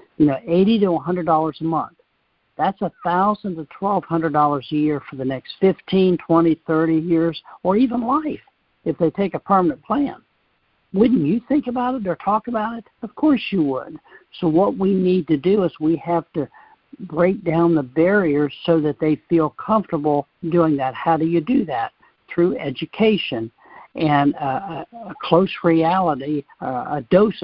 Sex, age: male, 60-79